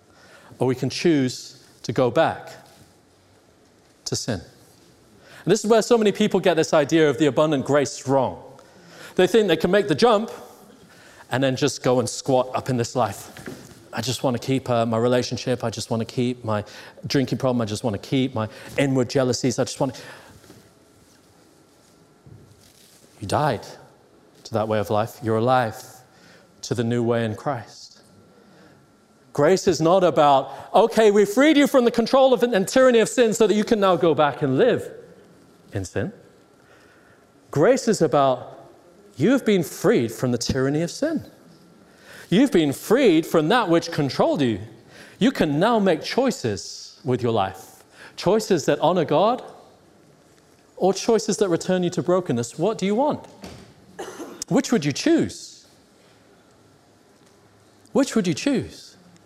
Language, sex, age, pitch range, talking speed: English, male, 40-59, 125-195 Hz, 160 wpm